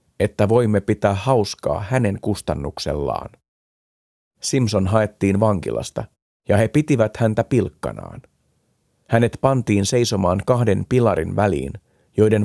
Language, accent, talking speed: Finnish, native, 100 wpm